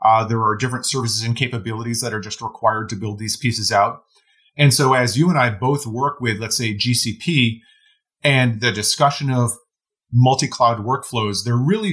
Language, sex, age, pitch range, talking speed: English, male, 30-49, 110-135 Hz, 180 wpm